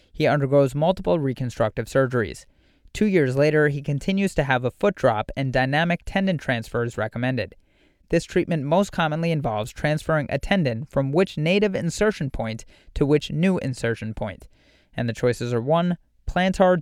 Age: 30-49